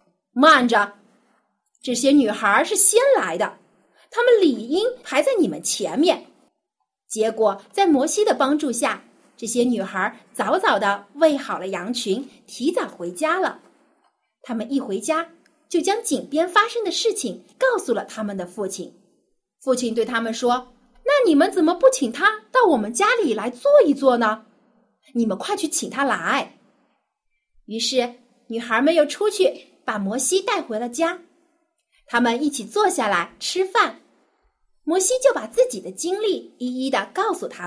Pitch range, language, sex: 225-350 Hz, Chinese, female